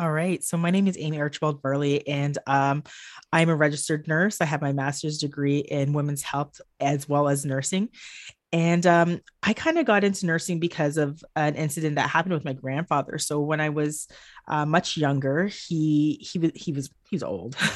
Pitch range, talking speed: 145-175 Hz, 195 wpm